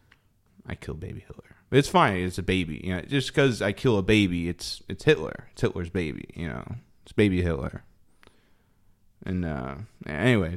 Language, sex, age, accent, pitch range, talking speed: English, male, 20-39, American, 95-125 Hz, 175 wpm